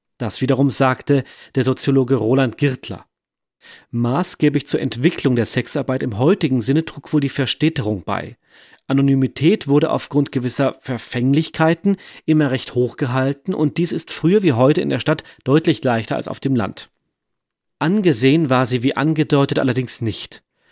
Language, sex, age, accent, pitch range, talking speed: German, male, 40-59, German, 130-160 Hz, 145 wpm